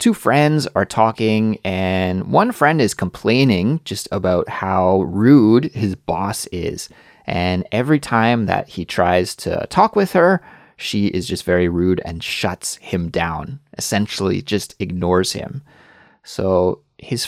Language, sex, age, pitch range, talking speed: English, male, 30-49, 95-145 Hz, 140 wpm